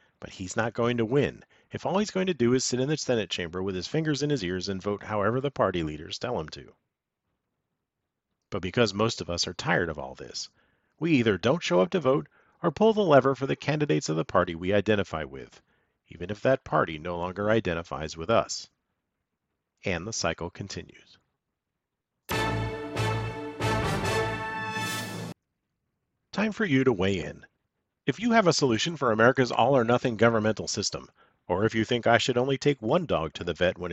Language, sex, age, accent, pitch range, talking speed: English, male, 40-59, American, 95-130 Hz, 185 wpm